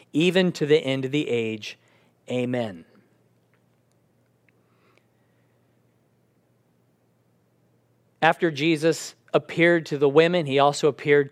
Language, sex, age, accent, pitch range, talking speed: English, male, 40-59, American, 130-170 Hz, 90 wpm